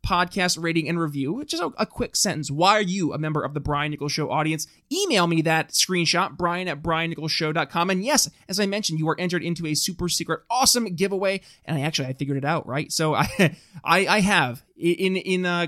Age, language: 20-39, English